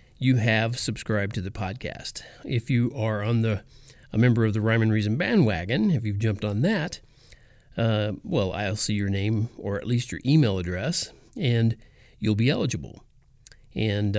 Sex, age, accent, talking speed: male, 40-59, American, 175 wpm